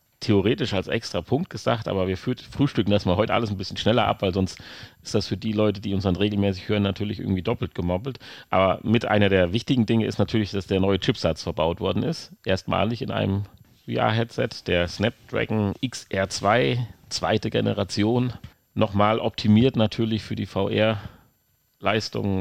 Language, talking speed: German, 165 wpm